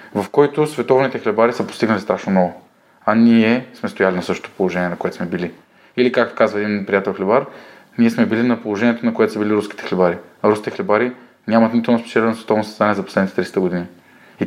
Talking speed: 205 wpm